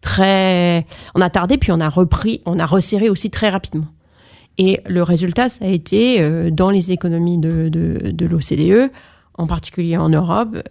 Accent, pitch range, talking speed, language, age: French, 155-190 Hz, 180 wpm, French, 40-59